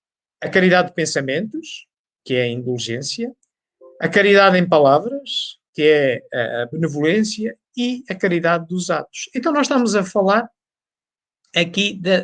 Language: Portuguese